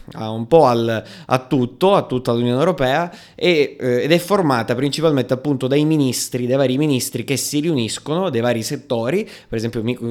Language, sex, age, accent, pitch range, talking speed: Italian, male, 20-39, native, 120-150 Hz, 185 wpm